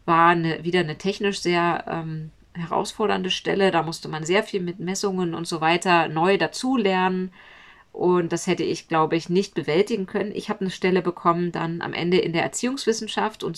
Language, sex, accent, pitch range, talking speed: German, female, German, 170-210 Hz, 190 wpm